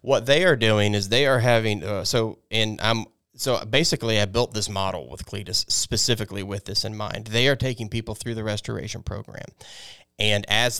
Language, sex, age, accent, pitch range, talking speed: English, male, 30-49, American, 100-115 Hz, 195 wpm